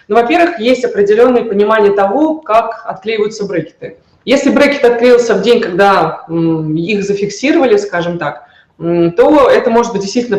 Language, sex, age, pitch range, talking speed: Russian, female, 20-39, 175-235 Hz, 140 wpm